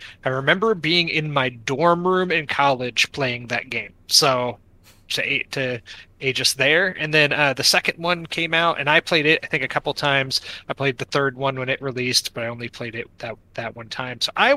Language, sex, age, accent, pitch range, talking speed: English, male, 20-39, American, 125-150 Hz, 225 wpm